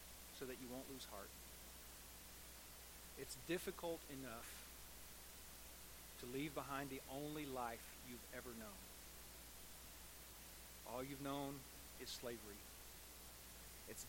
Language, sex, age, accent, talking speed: English, male, 40-59, American, 100 wpm